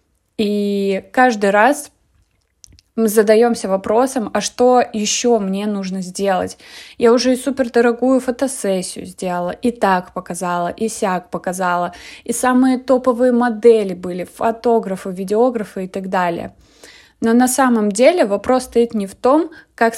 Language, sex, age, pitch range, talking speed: Russian, female, 20-39, 190-240 Hz, 130 wpm